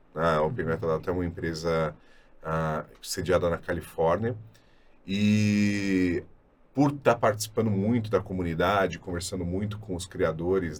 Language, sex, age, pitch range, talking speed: Portuguese, male, 30-49, 90-110 Hz, 135 wpm